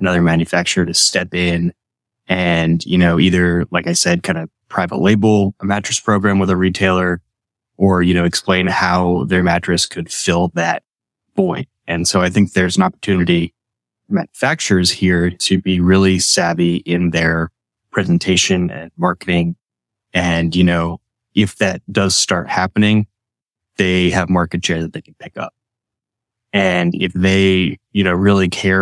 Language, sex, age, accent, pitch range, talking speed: English, male, 20-39, American, 90-110 Hz, 160 wpm